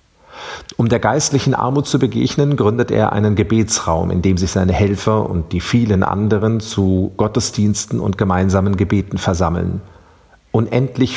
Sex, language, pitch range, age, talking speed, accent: male, German, 95-120 Hz, 40-59, 140 wpm, German